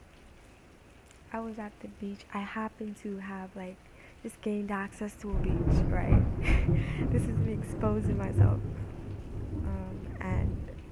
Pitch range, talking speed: 180-215 Hz, 130 wpm